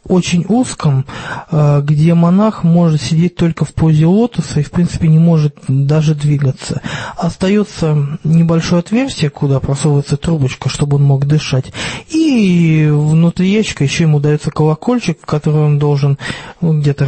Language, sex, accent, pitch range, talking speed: Russian, male, native, 145-180 Hz, 135 wpm